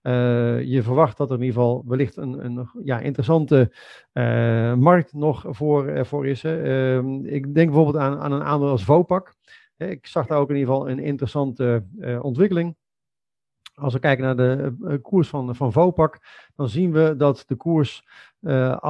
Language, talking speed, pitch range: Dutch, 185 wpm, 130-160 Hz